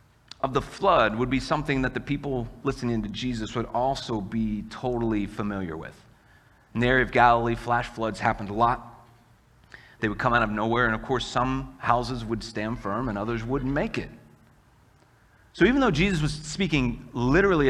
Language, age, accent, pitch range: English, 30-49, American, 105-125 Hz